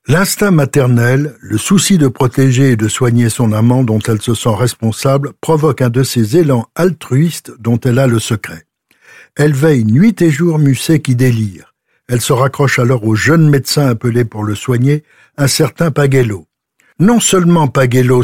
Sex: male